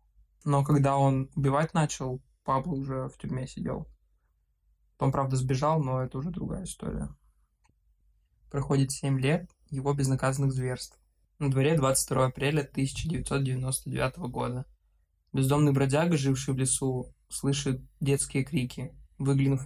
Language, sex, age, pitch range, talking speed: Russian, male, 20-39, 130-145 Hz, 120 wpm